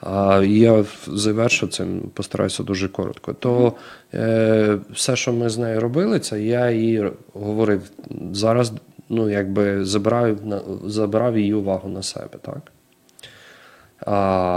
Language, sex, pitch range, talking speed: English, male, 95-110 Hz, 110 wpm